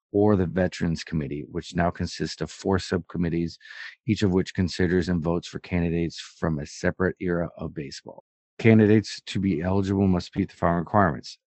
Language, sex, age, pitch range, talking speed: English, male, 30-49, 85-95 Hz, 175 wpm